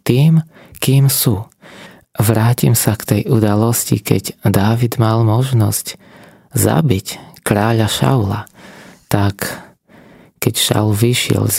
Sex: male